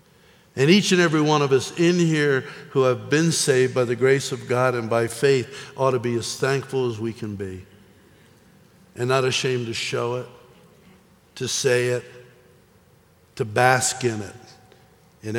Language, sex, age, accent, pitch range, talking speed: English, male, 60-79, American, 130-175 Hz, 170 wpm